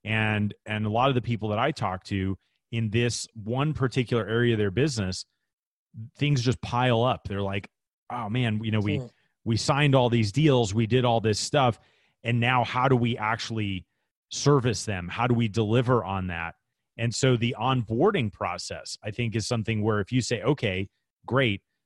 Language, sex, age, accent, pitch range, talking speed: English, male, 30-49, American, 105-130 Hz, 190 wpm